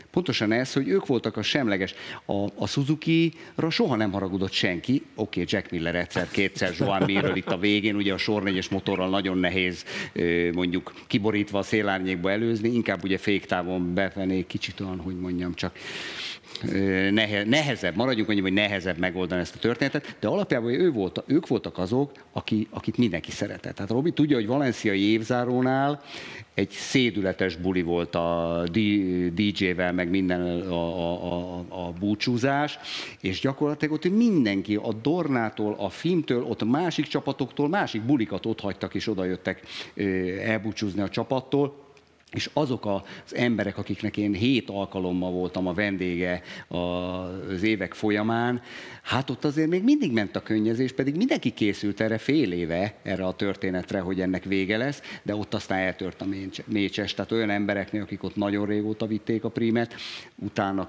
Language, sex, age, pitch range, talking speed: Hungarian, male, 50-69, 95-115 Hz, 150 wpm